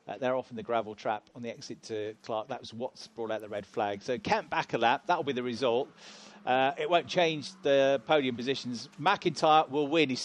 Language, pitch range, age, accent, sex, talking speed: English, 120-145 Hz, 40-59, British, male, 235 wpm